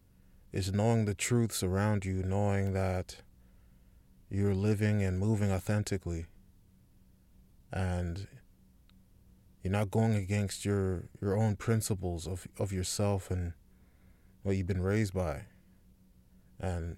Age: 20-39